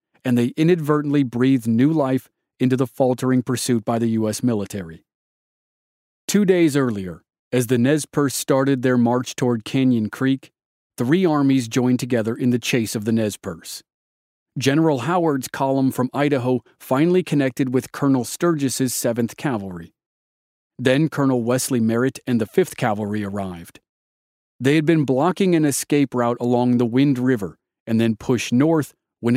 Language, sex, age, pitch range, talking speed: English, male, 40-59, 115-140 Hz, 155 wpm